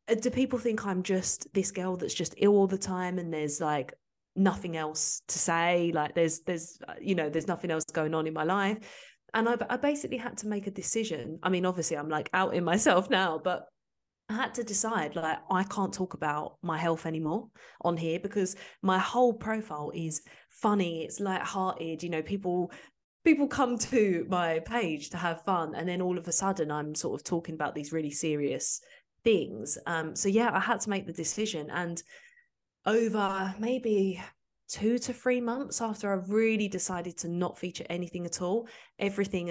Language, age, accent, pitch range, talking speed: English, 20-39, British, 165-210 Hz, 195 wpm